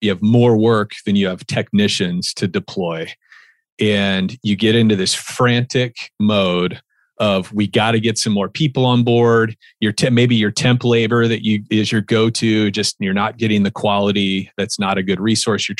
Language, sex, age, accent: English, male, 40-59, American